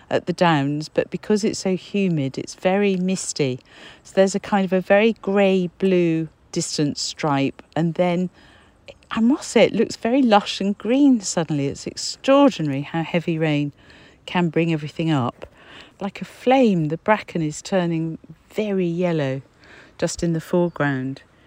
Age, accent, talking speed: 50-69, British, 155 wpm